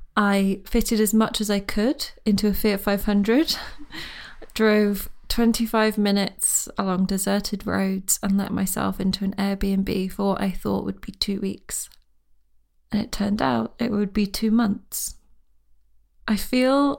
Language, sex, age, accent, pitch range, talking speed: English, female, 20-39, British, 195-215 Hz, 150 wpm